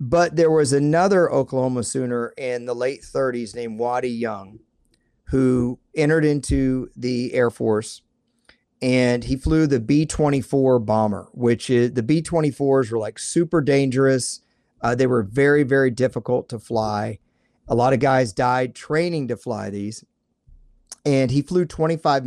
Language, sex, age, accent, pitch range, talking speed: English, male, 40-59, American, 120-155 Hz, 145 wpm